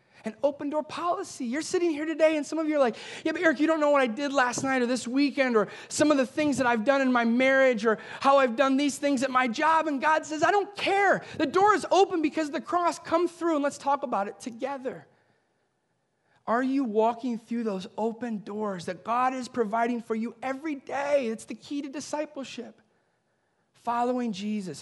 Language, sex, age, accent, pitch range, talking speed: English, male, 30-49, American, 205-275 Hz, 220 wpm